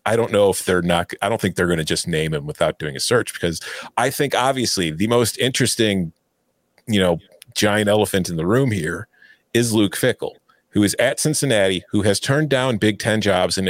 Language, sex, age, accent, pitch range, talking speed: English, male, 40-59, American, 95-130 Hz, 215 wpm